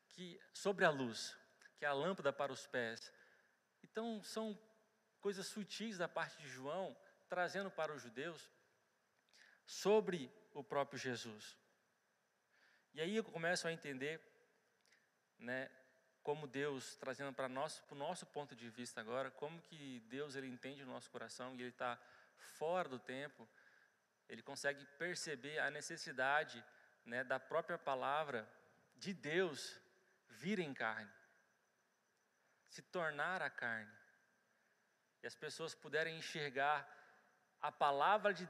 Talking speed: 130 wpm